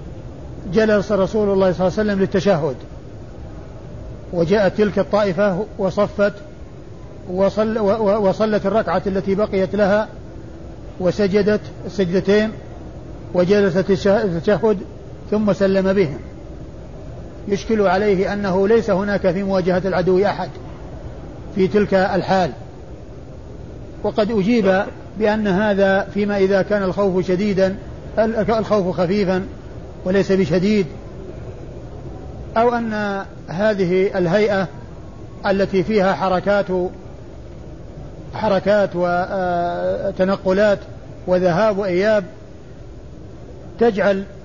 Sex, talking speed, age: male, 85 wpm, 50-69